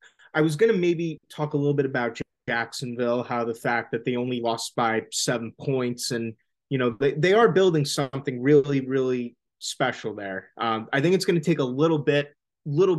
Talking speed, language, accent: 205 wpm, English, American